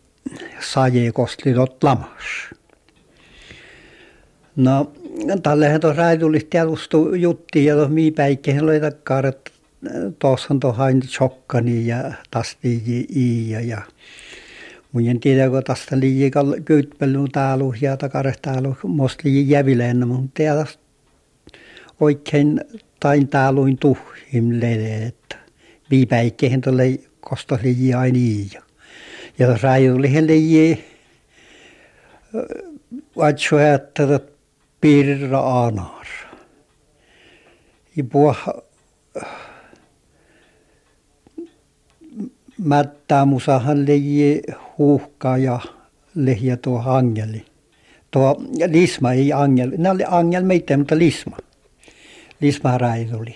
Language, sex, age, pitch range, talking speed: Finnish, male, 60-79, 130-150 Hz, 80 wpm